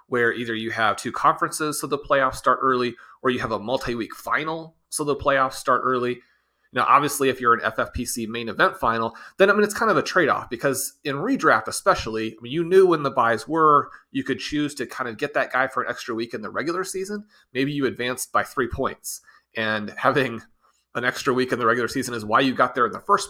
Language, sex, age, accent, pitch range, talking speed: English, male, 30-49, American, 110-145 Hz, 230 wpm